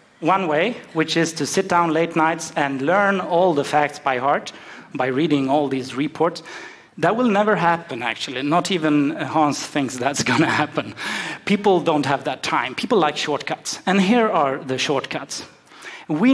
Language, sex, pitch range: Japanese, male, 150-195 Hz